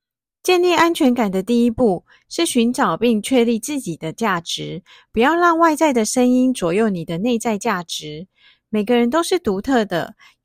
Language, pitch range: Chinese, 185-270 Hz